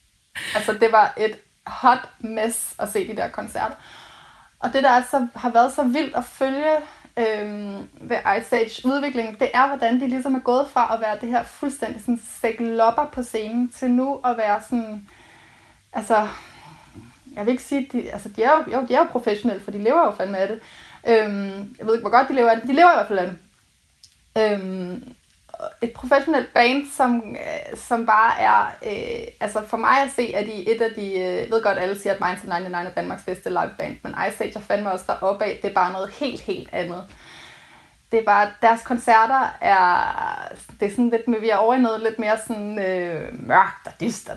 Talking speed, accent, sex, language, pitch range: 210 wpm, native, female, Danish, 205-255 Hz